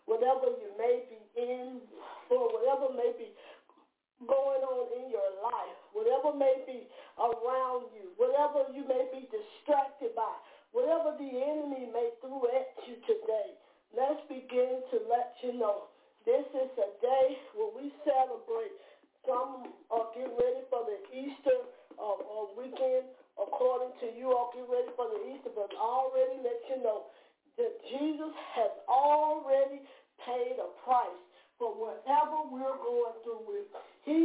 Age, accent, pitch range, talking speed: 40-59, American, 245-345 Hz, 145 wpm